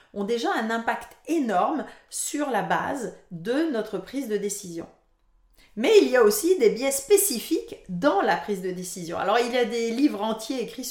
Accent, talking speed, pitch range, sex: French, 185 wpm, 210-310 Hz, female